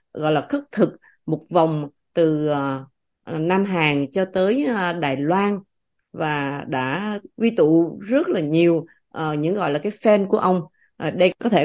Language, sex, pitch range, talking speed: Vietnamese, female, 150-210 Hz, 180 wpm